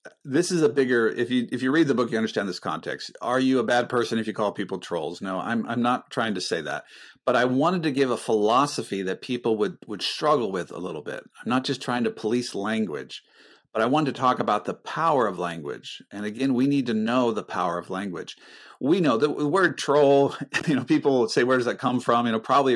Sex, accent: male, American